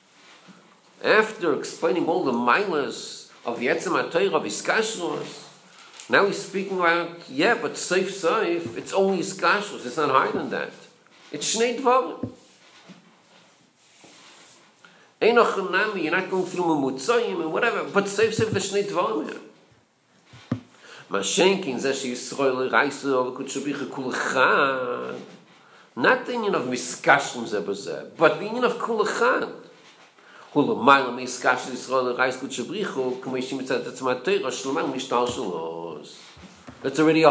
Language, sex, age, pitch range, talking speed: English, male, 50-69, 130-195 Hz, 100 wpm